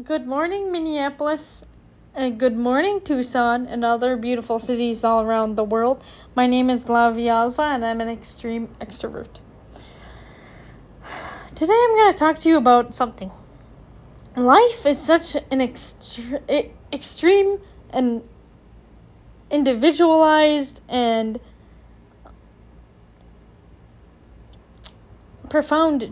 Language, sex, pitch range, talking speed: English, female, 230-300 Hz, 100 wpm